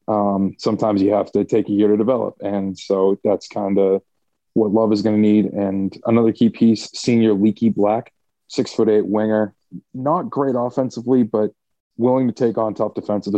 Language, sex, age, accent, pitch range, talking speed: English, male, 20-39, American, 100-120 Hz, 190 wpm